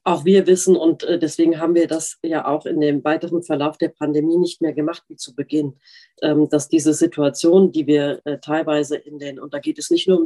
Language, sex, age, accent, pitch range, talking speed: German, female, 40-59, German, 155-185 Hz, 215 wpm